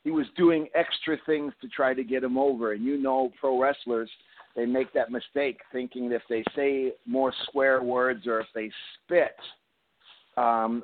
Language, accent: English, American